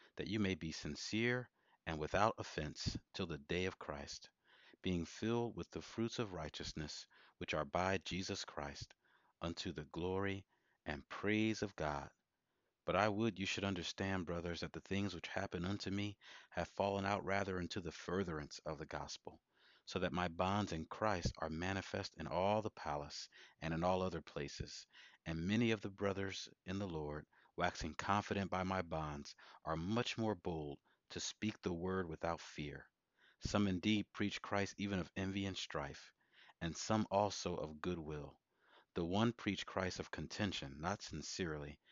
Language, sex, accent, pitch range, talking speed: English, male, American, 80-100 Hz, 170 wpm